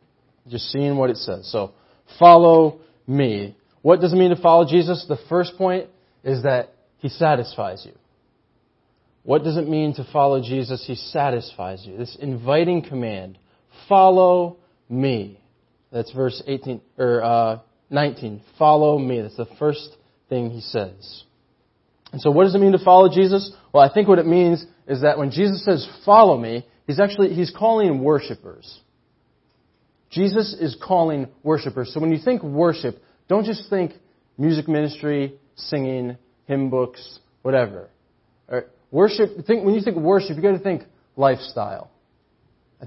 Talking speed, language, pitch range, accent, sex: 155 wpm, English, 125-175 Hz, American, male